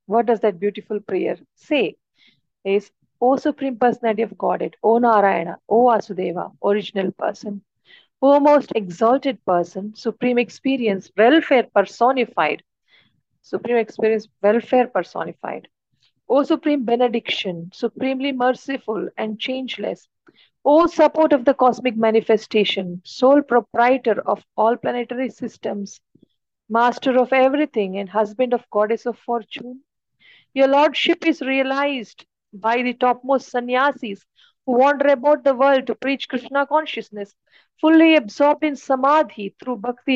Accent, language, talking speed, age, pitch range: Indian, English, 120 wpm, 50-69, 215-270 Hz